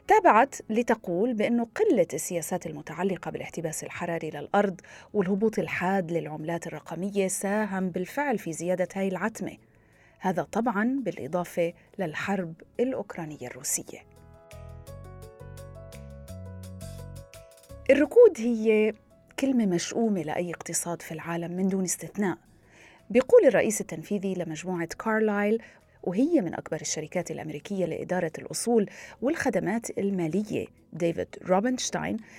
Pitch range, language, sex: 165-225 Hz, Arabic, female